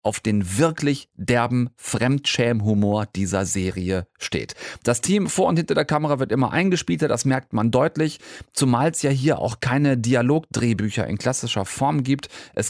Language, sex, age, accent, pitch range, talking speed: German, male, 40-59, German, 120-165 Hz, 160 wpm